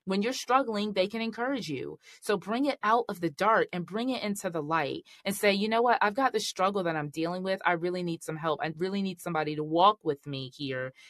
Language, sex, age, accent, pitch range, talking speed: English, female, 20-39, American, 170-225 Hz, 255 wpm